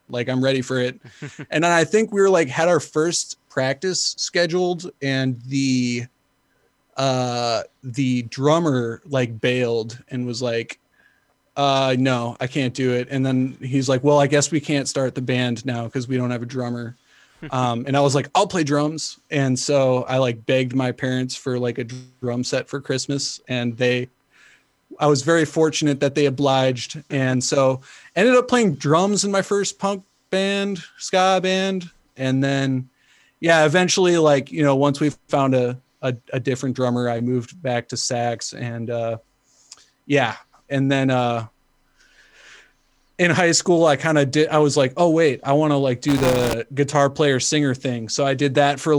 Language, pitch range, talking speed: English, 125-150 Hz, 185 wpm